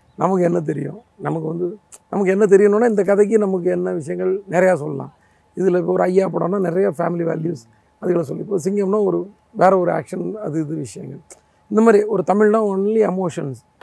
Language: Tamil